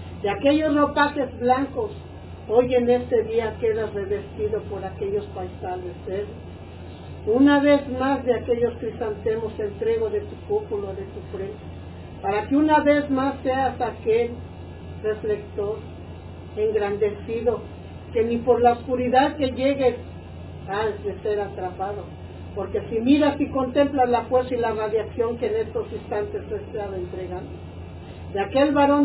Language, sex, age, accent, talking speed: Spanish, female, 50-69, American, 140 wpm